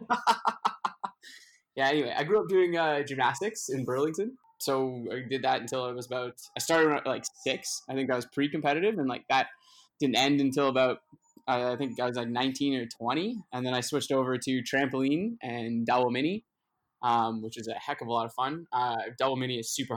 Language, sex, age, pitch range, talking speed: English, male, 20-39, 125-145 Hz, 205 wpm